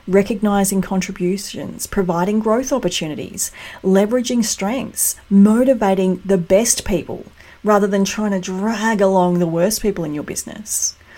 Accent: Australian